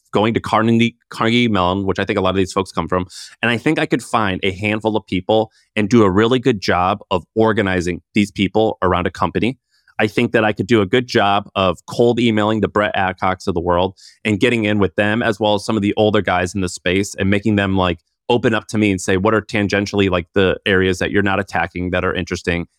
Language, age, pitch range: English, 30-49, 95-115 Hz